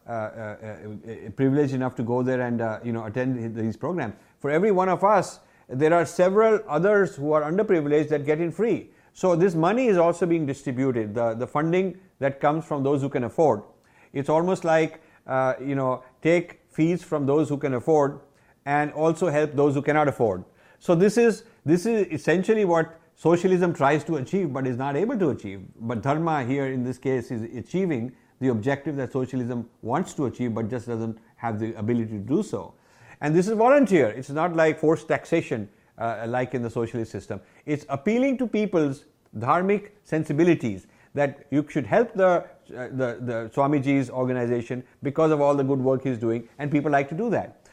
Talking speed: 195 wpm